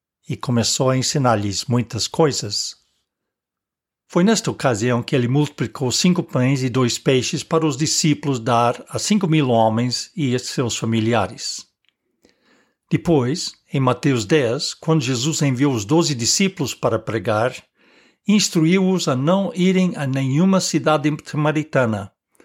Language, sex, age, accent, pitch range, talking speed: English, male, 60-79, Brazilian, 120-170 Hz, 130 wpm